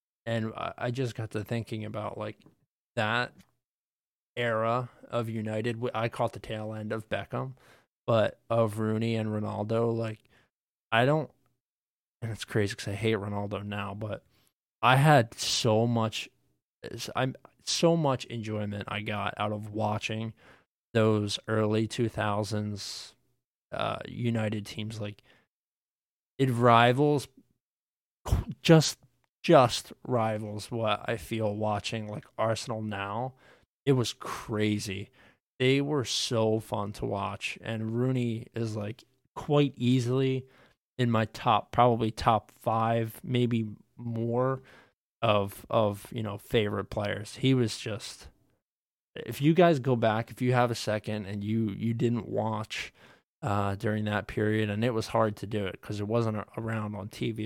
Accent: American